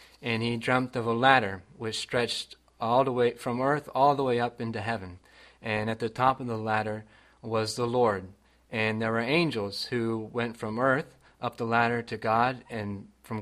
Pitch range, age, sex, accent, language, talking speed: 105-125 Hz, 30-49, male, American, English, 195 wpm